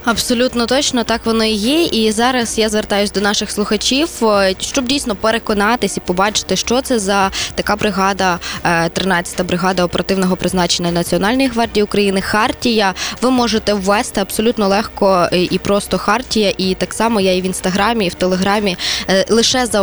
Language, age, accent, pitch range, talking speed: Ukrainian, 20-39, native, 190-235 Hz, 155 wpm